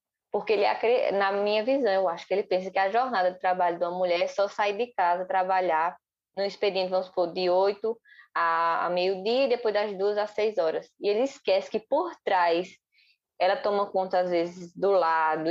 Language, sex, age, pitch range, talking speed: Portuguese, female, 10-29, 170-205 Hz, 205 wpm